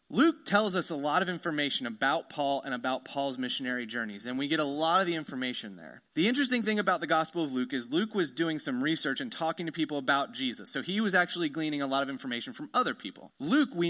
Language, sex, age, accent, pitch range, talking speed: English, male, 30-49, American, 140-210 Hz, 245 wpm